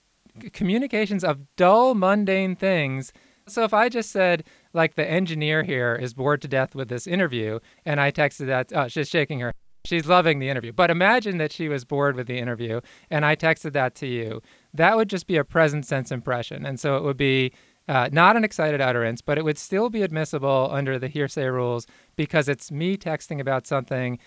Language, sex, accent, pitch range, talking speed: English, male, American, 130-170 Hz, 200 wpm